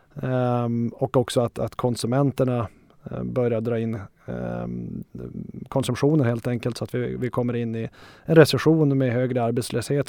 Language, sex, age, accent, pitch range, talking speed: Swedish, male, 20-39, native, 120-140 Hz, 135 wpm